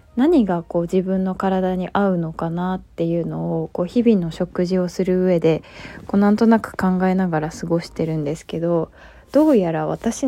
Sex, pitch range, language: female, 170-210 Hz, Japanese